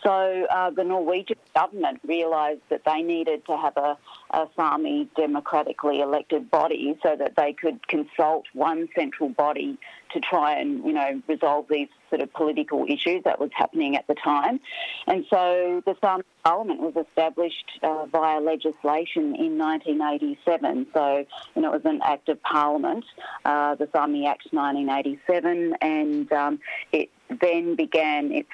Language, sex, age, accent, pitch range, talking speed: English, female, 40-59, Australian, 150-185 Hz, 155 wpm